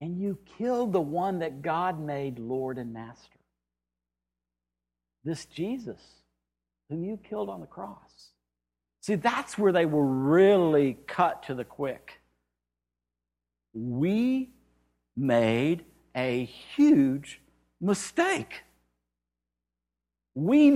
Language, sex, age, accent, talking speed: English, male, 60-79, American, 100 wpm